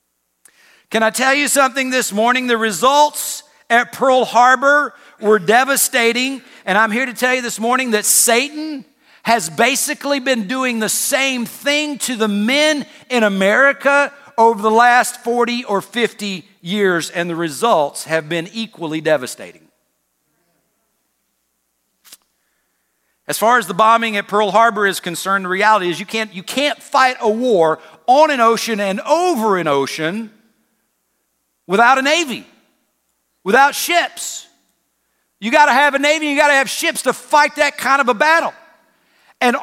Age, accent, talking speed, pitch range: 50-69, American, 150 wpm, 185-260 Hz